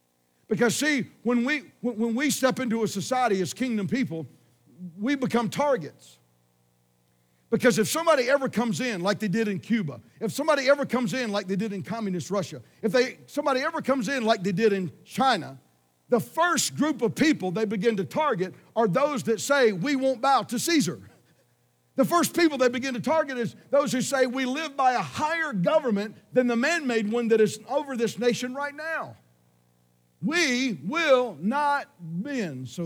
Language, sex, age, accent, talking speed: English, male, 50-69, American, 185 wpm